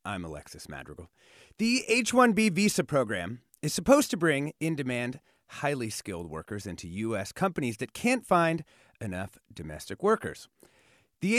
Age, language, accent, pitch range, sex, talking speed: 30-49, English, American, 115-195 Hz, male, 130 wpm